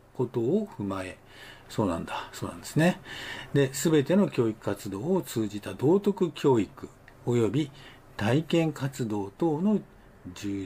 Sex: male